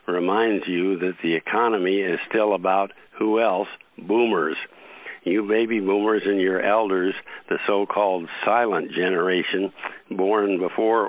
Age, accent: 60-79, American